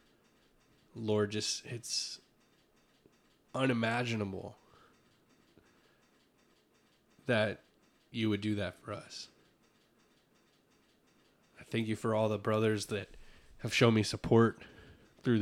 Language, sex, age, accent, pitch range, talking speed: English, male, 20-39, American, 100-115 Hz, 95 wpm